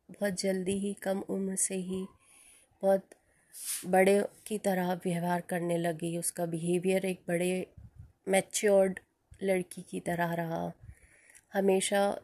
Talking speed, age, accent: 120 wpm, 20-39, native